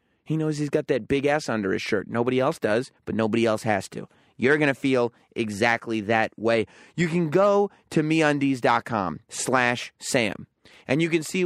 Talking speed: 185 wpm